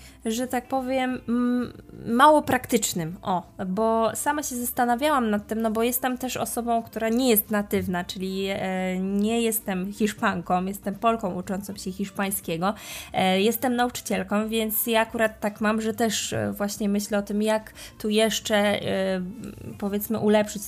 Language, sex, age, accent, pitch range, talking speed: Polish, female, 20-39, native, 195-235 Hz, 140 wpm